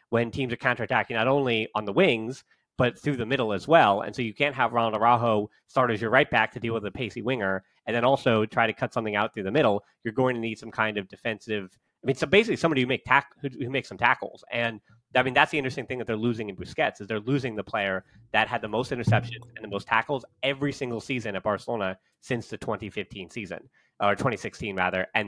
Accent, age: American, 30-49